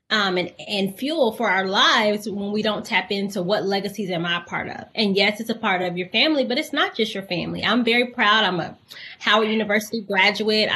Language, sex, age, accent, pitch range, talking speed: English, female, 20-39, American, 200-255 Hz, 225 wpm